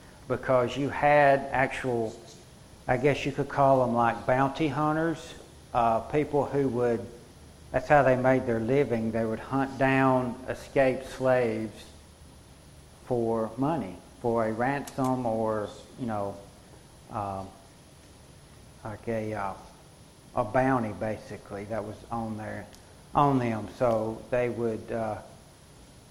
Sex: male